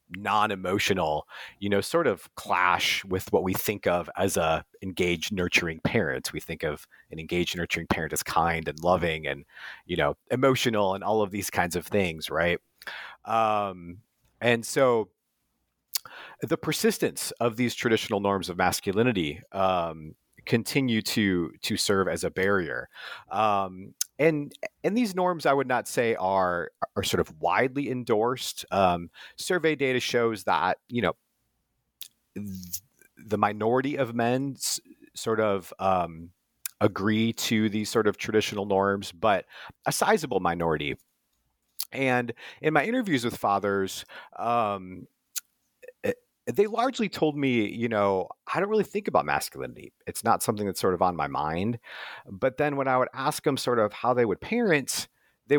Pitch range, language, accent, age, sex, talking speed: 95-135 Hz, English, American, 40-59, male, 150 wpm